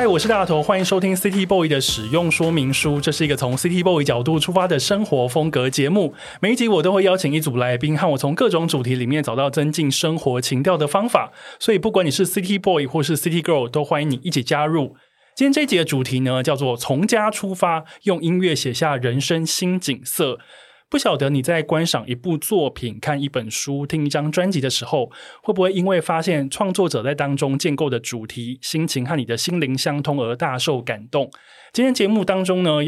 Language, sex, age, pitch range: Chinese, male, 20-39, 130-175 Hz